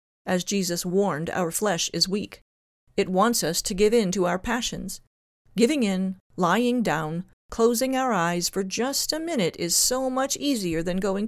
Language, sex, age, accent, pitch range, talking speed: English, female, 40-59, American, 170-235 Hz, 175 wpm